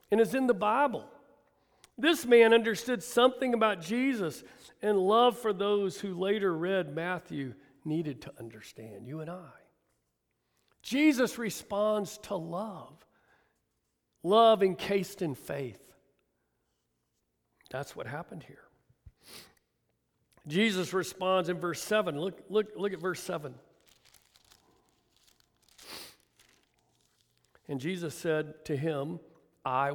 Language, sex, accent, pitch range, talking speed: English, male, American, 170-235 Hz, 105 wpm